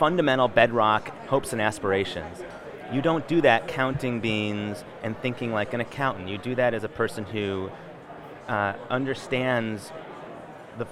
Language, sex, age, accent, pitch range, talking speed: English, male, 30-49, American, 105-130 Hz, 145 wpm